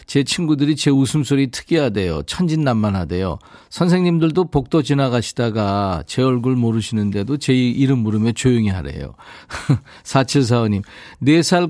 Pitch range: 110-155 Hz